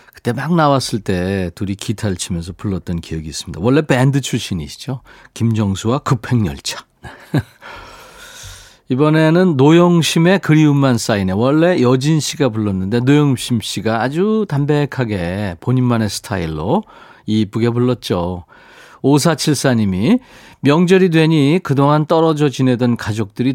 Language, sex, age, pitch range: Korean, male, 40-59, 110-155 Hz